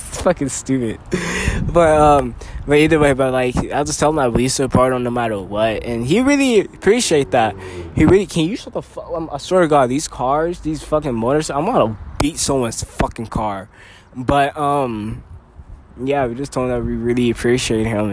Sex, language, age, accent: male, English, 20-39, American